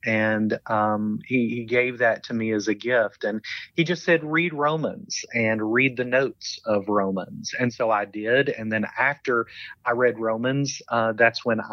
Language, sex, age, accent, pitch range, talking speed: English, male, 40-59, American, 110-125 Hz, 185 wpm